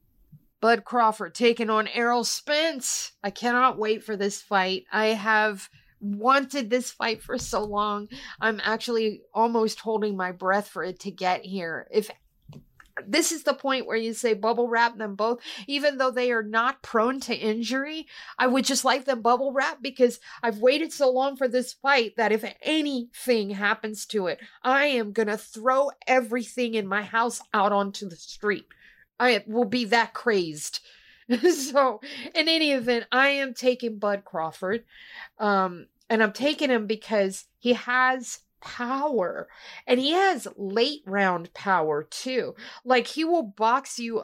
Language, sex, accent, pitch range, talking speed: English, female, American, 205-255 Hz, 165 wpm